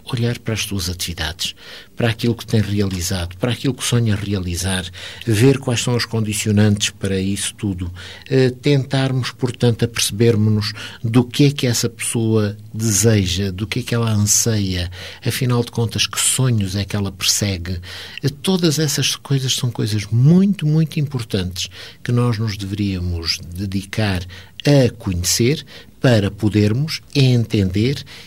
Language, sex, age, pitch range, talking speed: Portuguese, male, 60-79, 100-130 Hz, 145 wpm